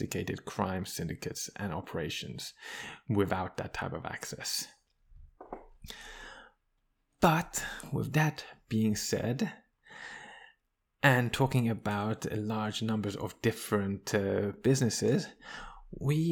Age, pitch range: 20-39, 110-130 Hz